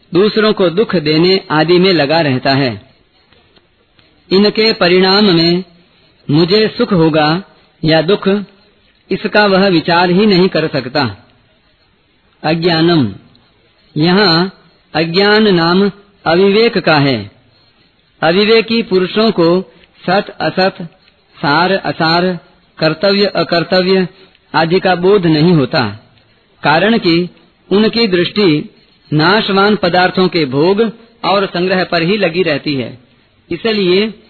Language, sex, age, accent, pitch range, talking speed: Hindi, female, 50-69, native, 155-200 Hz, 105 wpm